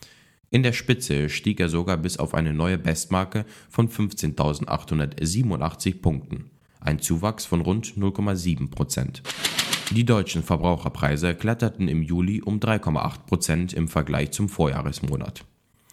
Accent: German